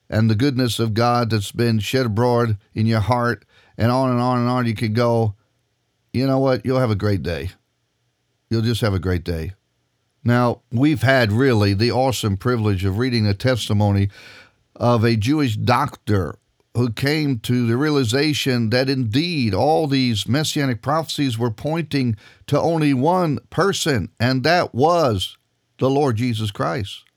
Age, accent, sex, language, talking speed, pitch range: 50-69, American, male, English, 165 wpm, 105-130 Hz